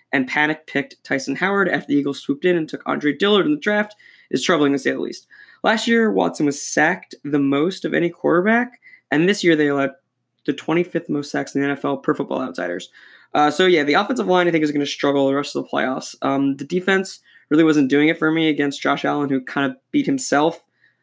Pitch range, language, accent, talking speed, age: 135-170 Hz, English, American, 230 wpm, 20-39